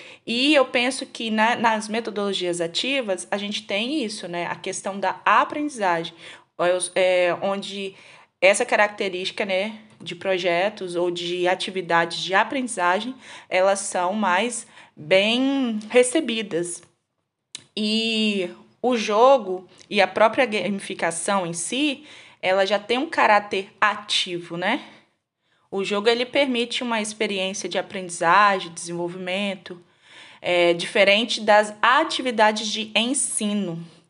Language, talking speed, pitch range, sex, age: Portuguese, 110 wpm, 180-230 Hz, female, 20-39